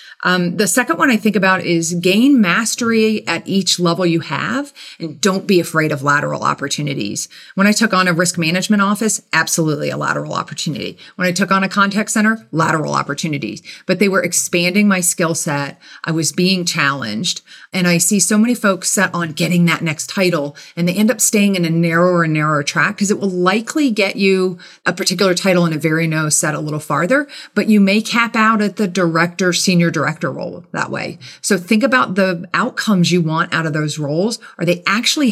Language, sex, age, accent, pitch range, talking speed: English, female, 40-59, American, 165-210 Hz, 205 wpm